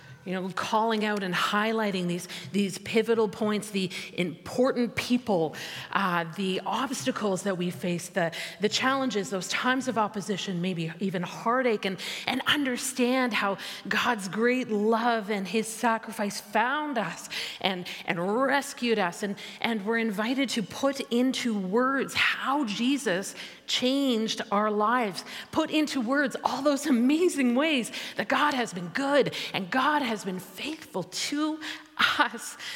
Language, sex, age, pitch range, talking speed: English, female, 30-49, 190-255 Hz, 140 wpm